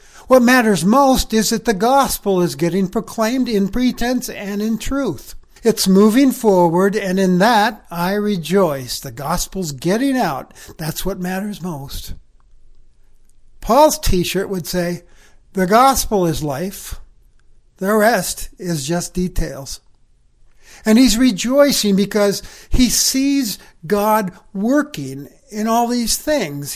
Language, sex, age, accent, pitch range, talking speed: English, male, 60-79, American, 180-240 Hz, 125 wpm